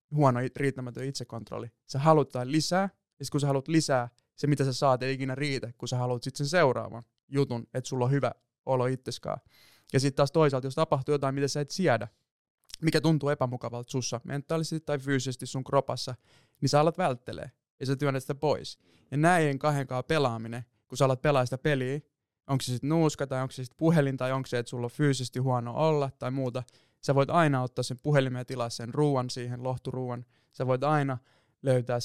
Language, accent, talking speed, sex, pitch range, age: Finnish, native, 200 wpm, male, 125-145 Hz, 20-39